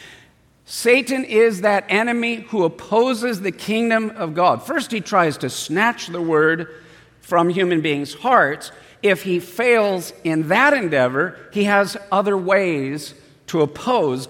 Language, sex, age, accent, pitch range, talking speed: English, male, 50-69, American, 150-215 Hz, 140 wpm